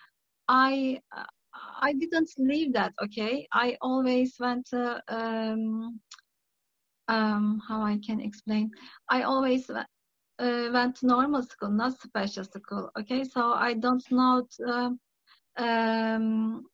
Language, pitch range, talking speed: English, 220-260 Hz, 120 wpm